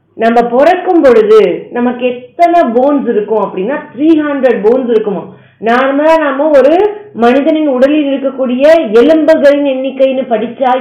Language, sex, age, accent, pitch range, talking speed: Tamil, female, 30-49, native, 220-280 Hz, 105 wpm